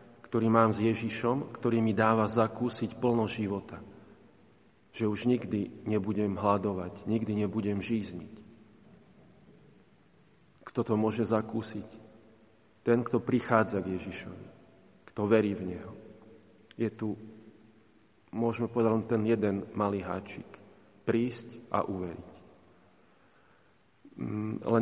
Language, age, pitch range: Slovak, 40-59, 100-115 Hz